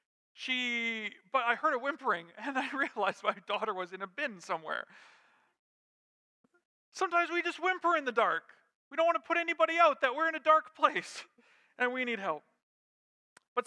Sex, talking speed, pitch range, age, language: male, 180 wpm, 230-305 Hz, 40-59, English